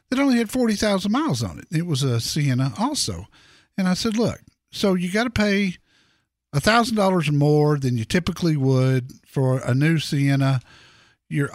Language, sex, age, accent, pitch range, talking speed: English, male, 50-69, American, 135-185 Hz, 175 wpm